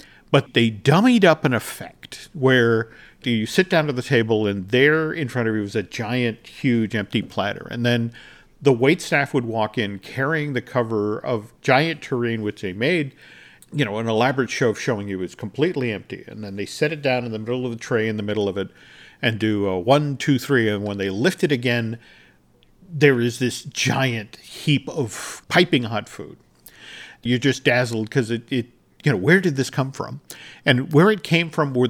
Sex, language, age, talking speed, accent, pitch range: male, English, 50-69, 205 wpm, American, 115-145 Hz